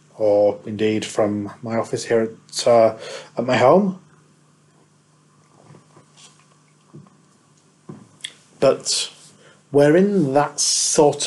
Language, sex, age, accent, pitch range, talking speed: English, male, 40-59, British, 110-135 Hz, 85 wpm